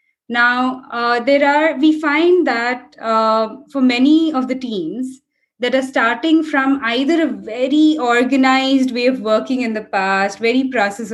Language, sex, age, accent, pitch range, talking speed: English, female, 20-39, Indian, 230-290 Hz, 155 wpm